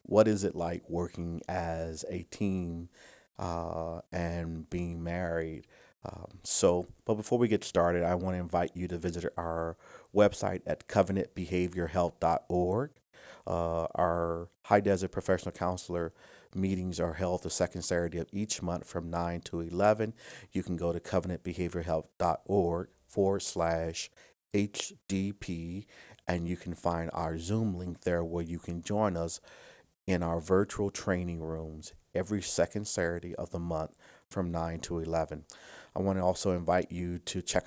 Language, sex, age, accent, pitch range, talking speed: English, male, 50-69, American, 85-95 Hz, 150 wpm